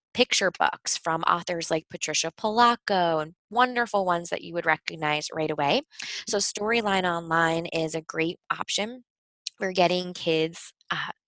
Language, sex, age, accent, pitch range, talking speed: English, female, 20-39, American, 160-205 Hz, 145 wpm